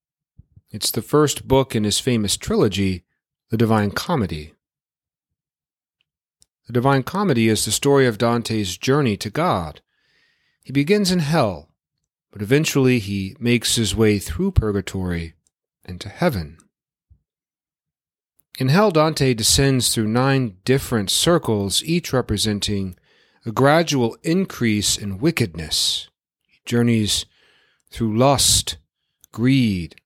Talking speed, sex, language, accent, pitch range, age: 115 wpm, male, English, American, 100-135 Hz, 40-59